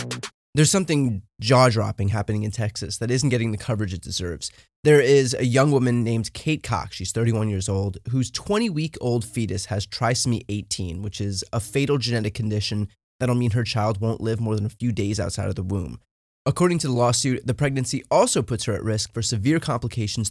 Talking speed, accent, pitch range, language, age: 195 wpm, American, 105-140 Hz, English, 20-39